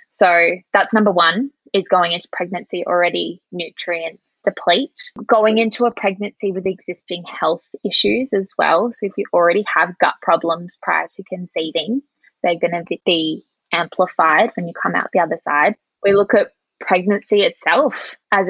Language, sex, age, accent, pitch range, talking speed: English, female, 20-39, Australian, 170-200 Hz, 160 wpm